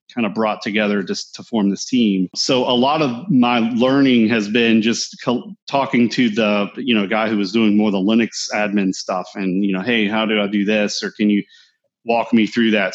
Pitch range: 105-130 Hz